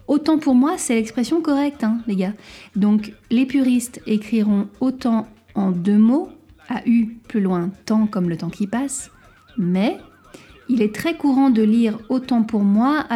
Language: French